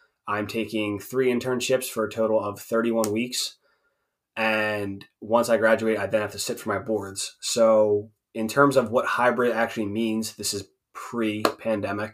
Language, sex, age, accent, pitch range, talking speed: English, male, 20-39, American, 105-120 Hz, 170 wpm